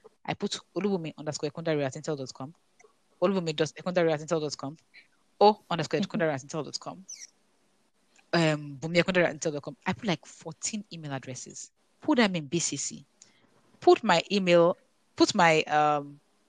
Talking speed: 100 wpm